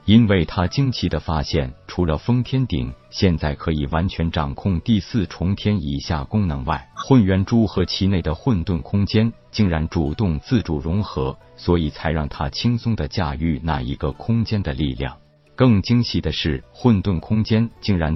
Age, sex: 50-69, male